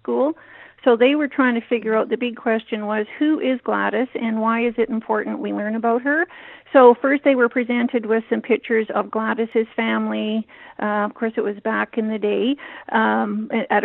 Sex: female